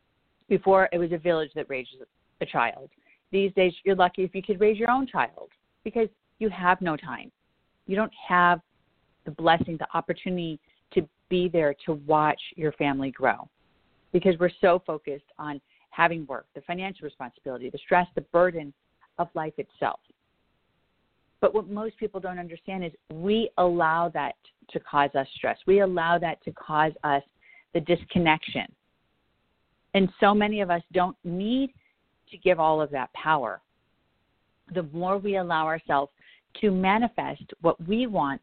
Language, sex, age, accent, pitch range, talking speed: English, female, 40-59, American, 155-195 Hz, 160 wpm